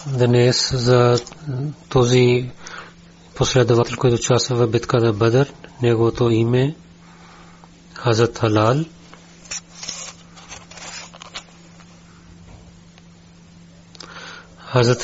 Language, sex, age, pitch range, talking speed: Bulgarian, male, 30-49, 105-135 Hz, 60 wpm